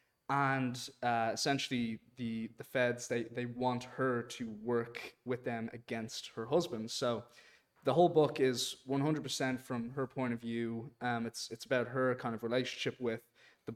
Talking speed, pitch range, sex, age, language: 165 wpm, 115-130 Hz, male, 20-39, English